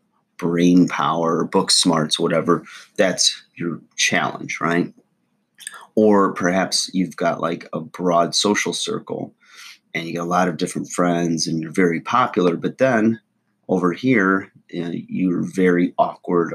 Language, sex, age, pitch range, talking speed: English, male, 30-49, 85-95 Hz, 135 wpm